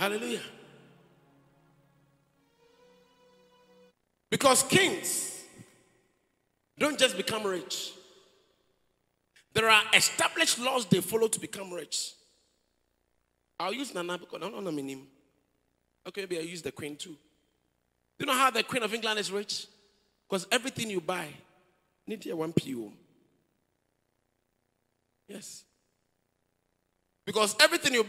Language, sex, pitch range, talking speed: English, male, 175-235 Hz, 120 wpm